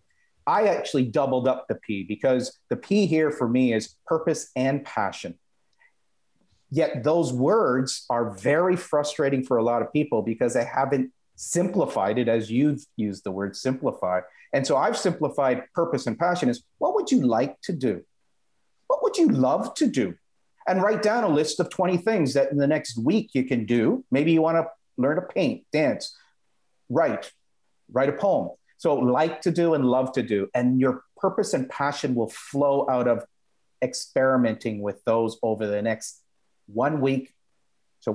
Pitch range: 125-170 Hz